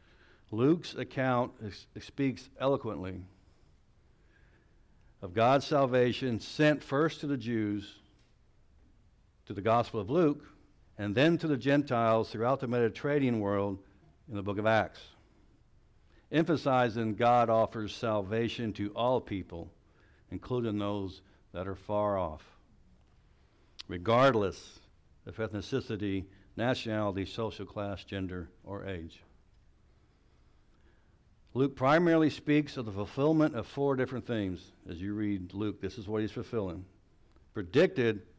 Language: English